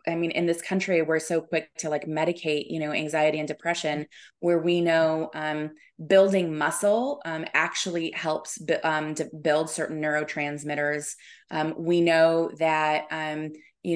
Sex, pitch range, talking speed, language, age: female, 155-175 Hz, 155 wpm, English, 20-39